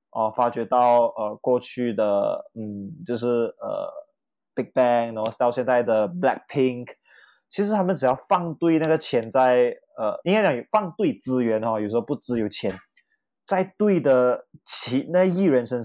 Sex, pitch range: male, 115-145 Hz